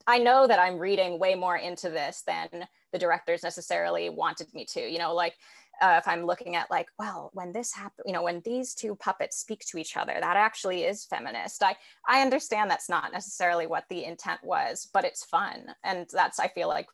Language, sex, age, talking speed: English, female, 20-39, 215 wpm